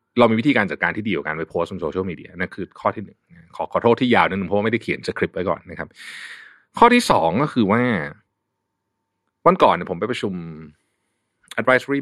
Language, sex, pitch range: Thai, male, 90-140 Hz